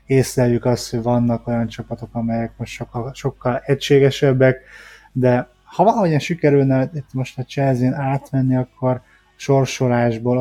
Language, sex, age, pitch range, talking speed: Hungarian, male, 20-39, 120-135 Hz, 125 wpm